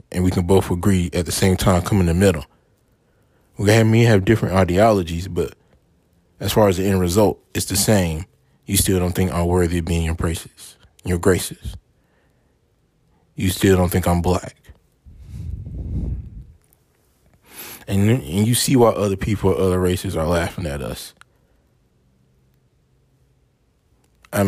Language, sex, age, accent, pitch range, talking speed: English, male, 20-39, American, 85-100 Hz, 150 wpm